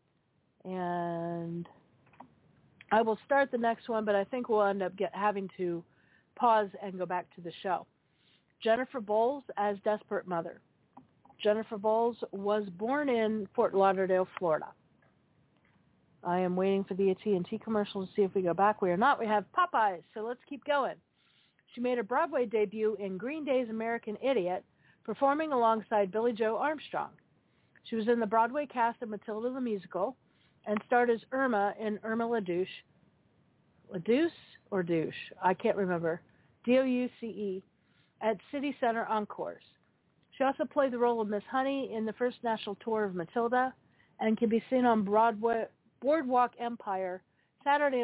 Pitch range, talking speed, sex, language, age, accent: 200-245 Hz, 160 wpm, female, English, 50-69, American